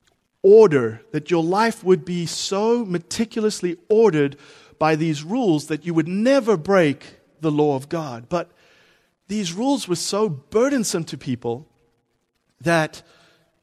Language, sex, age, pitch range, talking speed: English, male, 40-59, 140-190 Hz, 130 wpm